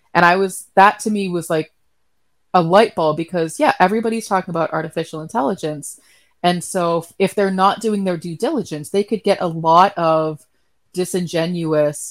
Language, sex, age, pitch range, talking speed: English, female, 30-49, 155-190 Hz, 170 wpm